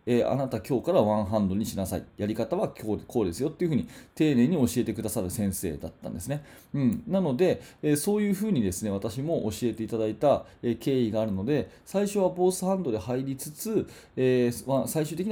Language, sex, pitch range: Japanese, male, 105-145 Hz